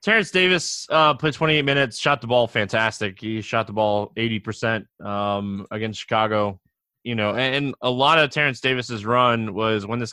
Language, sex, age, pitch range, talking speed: English, male, 20-39, 110-130 Hz, 195 wpm